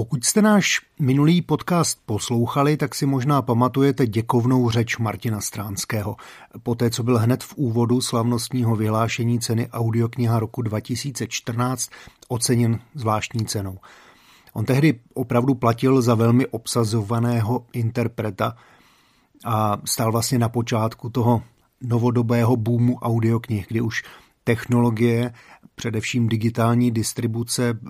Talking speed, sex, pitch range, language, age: 115 wpm, male, 110-125 Hz, Slovak, 40-59